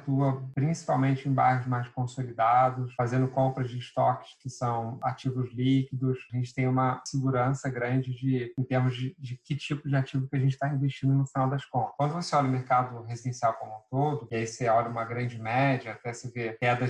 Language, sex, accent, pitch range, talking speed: Portuguese, male, Brazilian, 125-140 Hz, 205 wpm